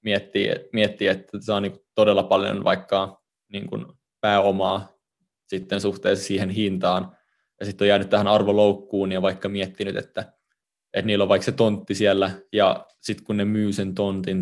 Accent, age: native, 20-39